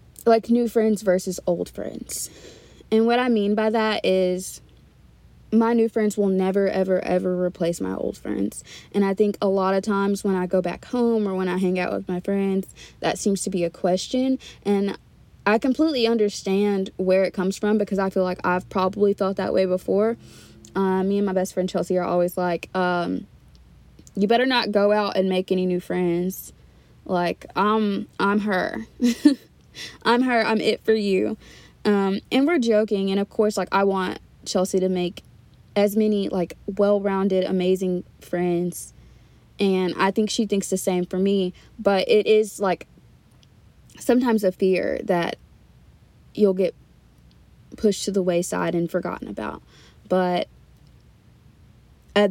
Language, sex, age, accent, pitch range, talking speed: English, female, 20-39, American, 185-210 Hz, 165 wpm